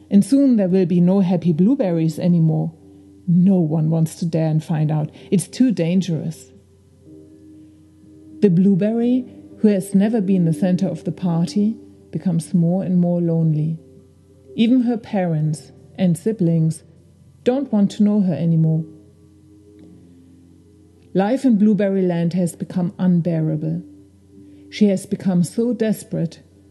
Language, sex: English, female